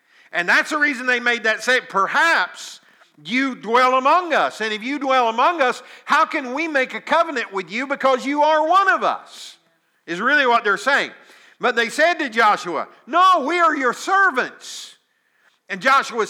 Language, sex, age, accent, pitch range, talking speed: English, male, 50-69, American, 200-275 Hz, 185 wpm